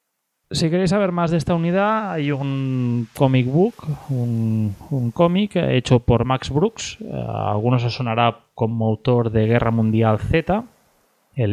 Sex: male